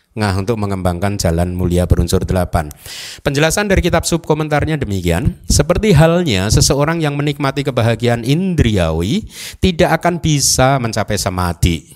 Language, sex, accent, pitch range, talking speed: Indonesian, male, native, 95-155 Hz, 120 wpm